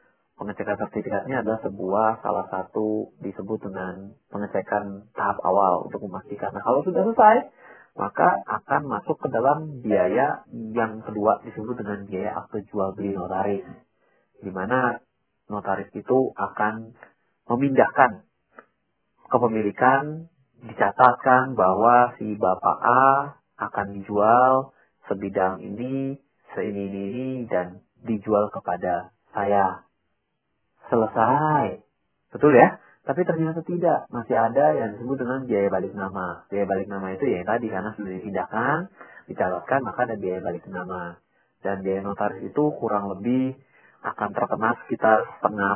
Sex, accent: male, native